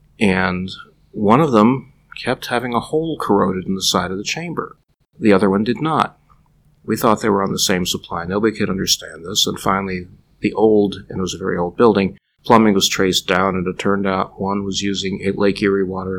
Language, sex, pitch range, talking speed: English, male, 95-105 Hz, 210 wpm